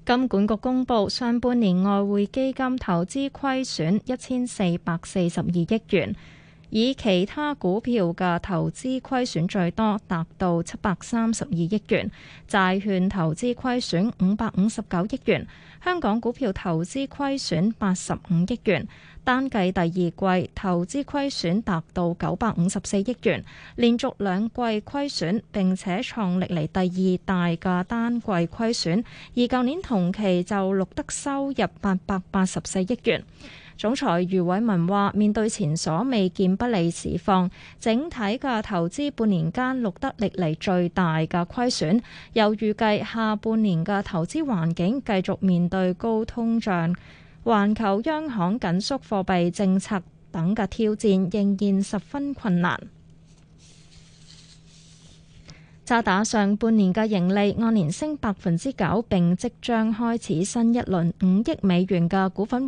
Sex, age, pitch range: female, 20-39, 180-235 Hz